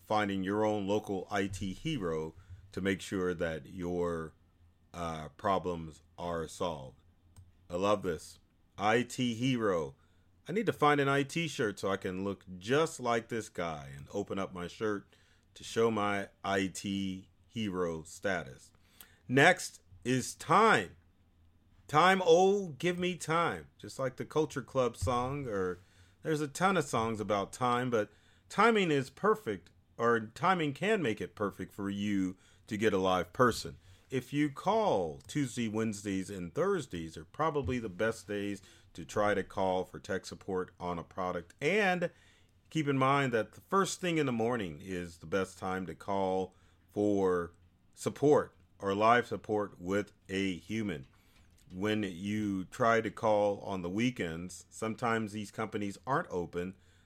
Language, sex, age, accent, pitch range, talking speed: English, male, 40-59, American, 90-120 Hz, 150 wpm